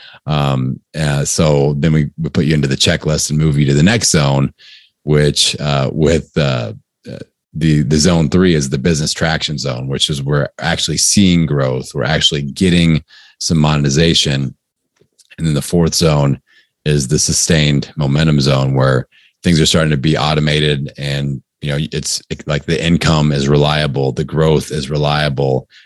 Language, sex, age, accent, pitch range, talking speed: English, male, 30-49, American, 70-80 Hz, 170 wpm